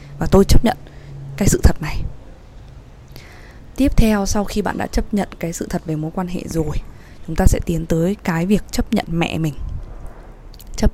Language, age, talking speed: Vietnamese, 20-39, 195 wpm